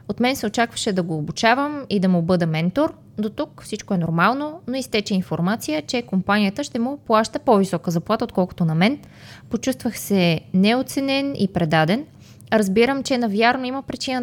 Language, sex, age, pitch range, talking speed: Bulgarian, female, 20-39, 185-240 Hz, 170 wpm